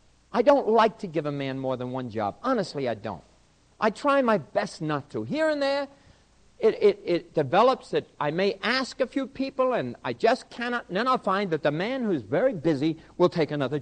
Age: 60-79